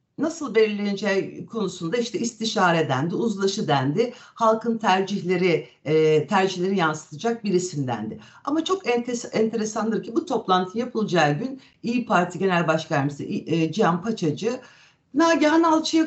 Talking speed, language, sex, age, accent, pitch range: 110 wpm, Turkish, female, 60-79, native, 170-230 Hz